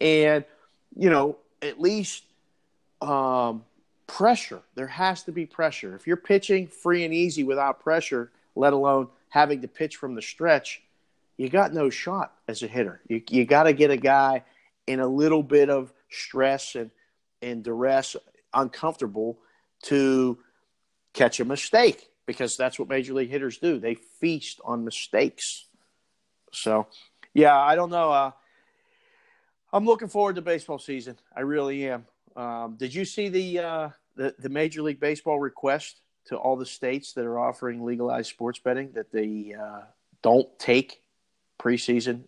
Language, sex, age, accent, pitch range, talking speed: English, male, 50-69, American, 125-155 Hz, 155 wpm